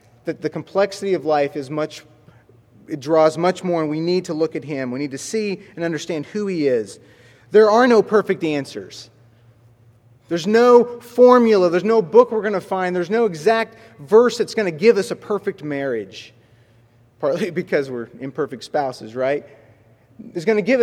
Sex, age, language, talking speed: male, 30-49, English, 185 wpm